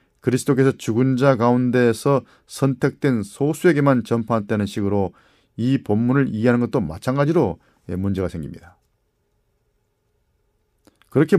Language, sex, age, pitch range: Korean, male, 40-59, 110-140 Hz